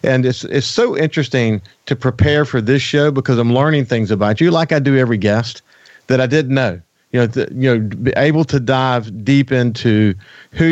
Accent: American